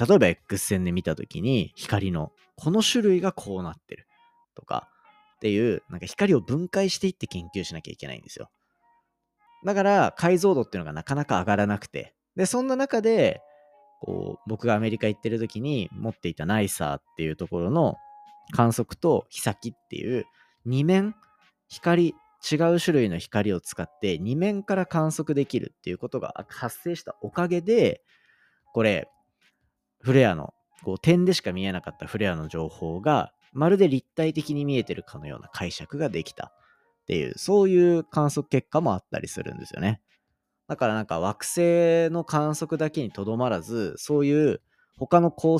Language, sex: Japanese, male